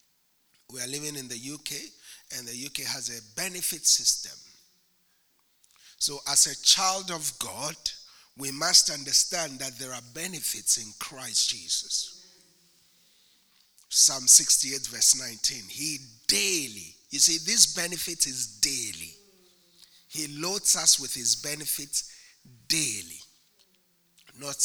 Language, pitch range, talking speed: English, 125-160 Hz, 120 wpm